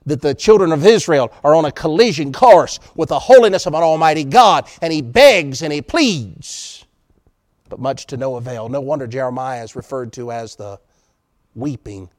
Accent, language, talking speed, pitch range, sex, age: American, English, 180 wpm, 125-195 Hz, male, 50-69